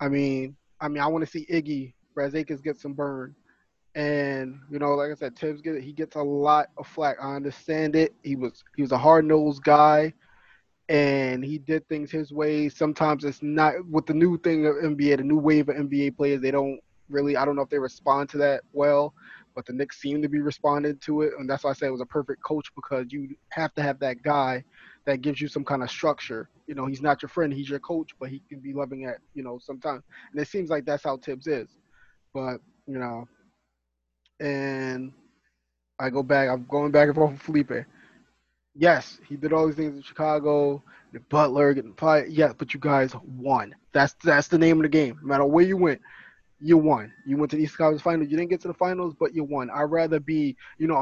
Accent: American